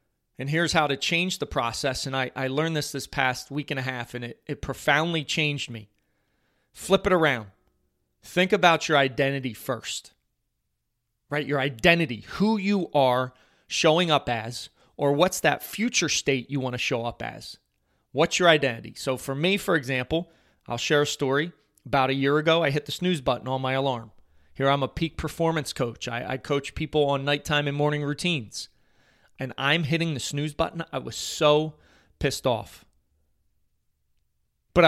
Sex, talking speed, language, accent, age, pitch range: male, 175 wpm, English, American, 30-49, 125-160 Hz